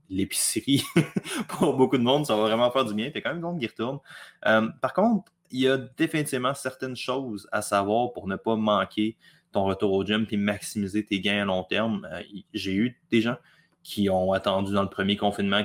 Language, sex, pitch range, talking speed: French, male, 100-130 Hz, 220 wpm